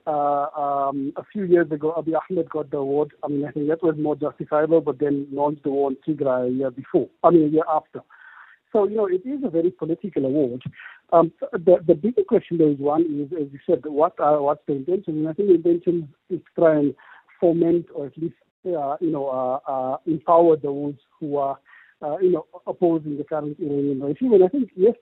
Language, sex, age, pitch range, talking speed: English, male, 50-69, 140-170 Hz, 230 wpm